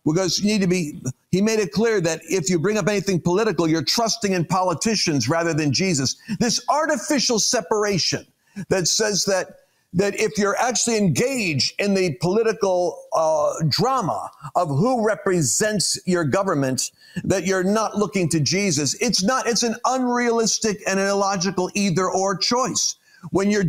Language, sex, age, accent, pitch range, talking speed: English, male, 50-69, American, 180-235 Hz, 155 wpm